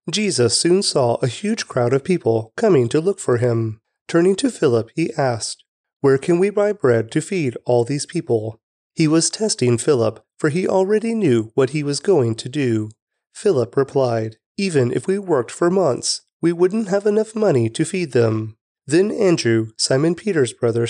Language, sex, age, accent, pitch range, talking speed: English, male, 30-49, American, 115-180 Hz, 180 wpm